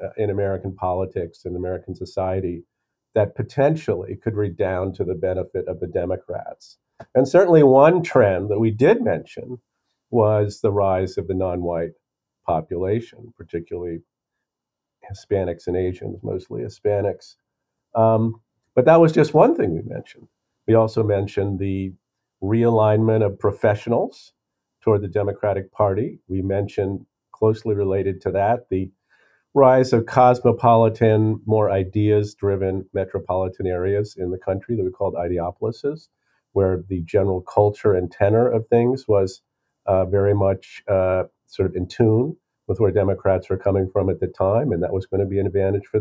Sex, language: male, English